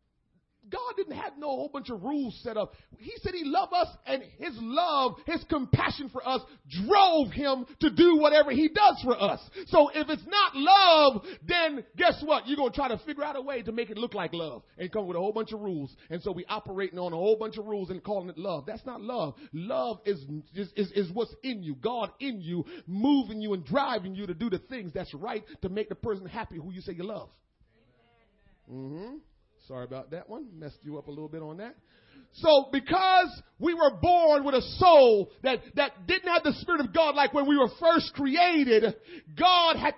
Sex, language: male, English